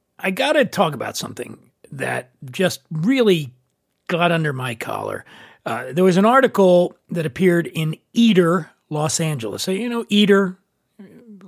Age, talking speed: 40-59, 150 wpm